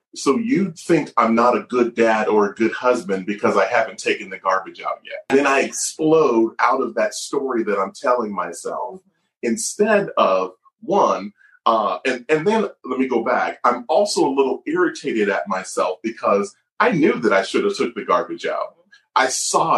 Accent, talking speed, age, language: American, 190 wpm, 30-49, English